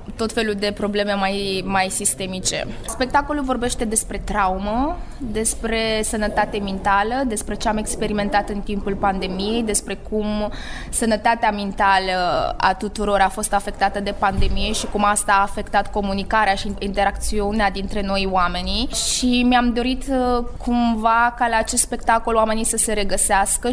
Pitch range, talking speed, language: 200-225 Hz, 140 wpm, Romanian